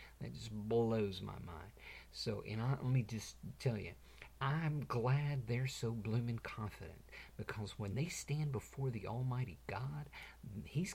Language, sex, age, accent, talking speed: English, male, 50-69, American, 140 wpm